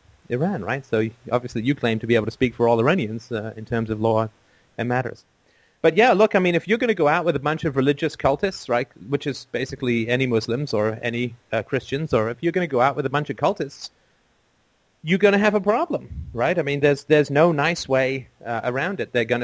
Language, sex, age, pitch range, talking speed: English, male, 30-49, 115-155 Hz, 245 wpm